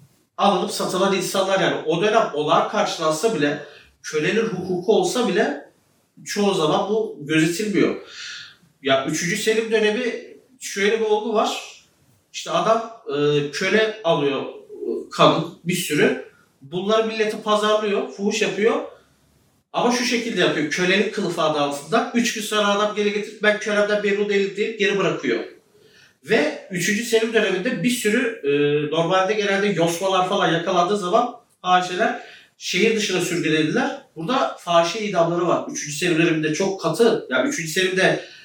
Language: Turkish